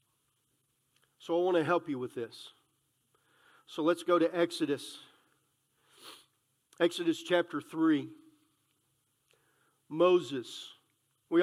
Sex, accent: male, American